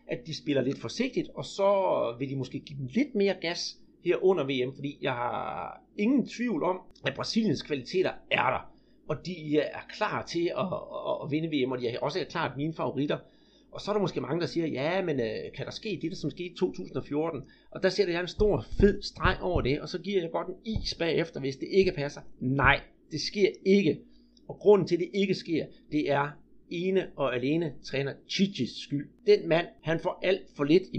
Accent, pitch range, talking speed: native, 145-195 Hz, 225 wpm